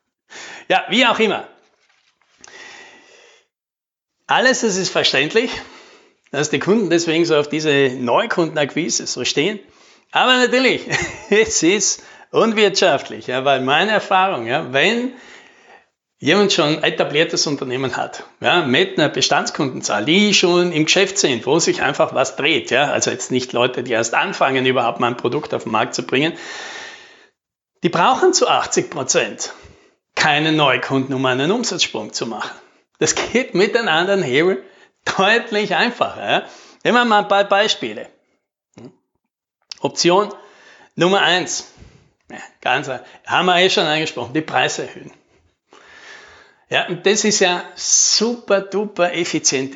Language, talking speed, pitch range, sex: German, 135 wpm, 150-225 Hz, male